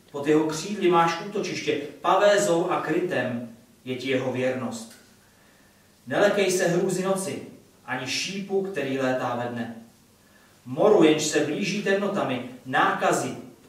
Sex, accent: male, native